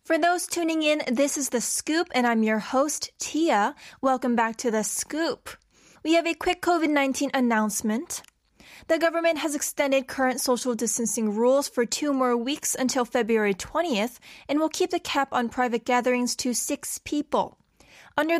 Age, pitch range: 10-29, 230-290 Hz